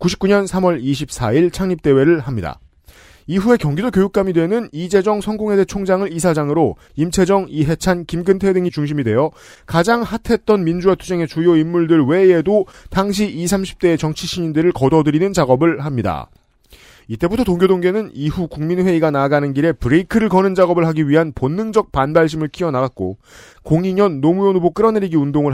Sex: male